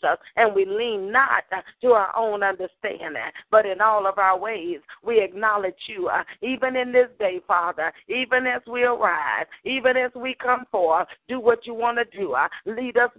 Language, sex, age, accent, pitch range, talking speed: English, female, 40-59, American, 205-255 Hz, 190 wpm